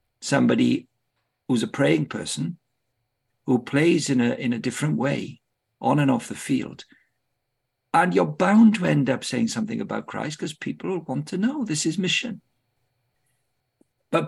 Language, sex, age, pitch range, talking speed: English, male, 50-69, 115-150 Hz, 155 wpm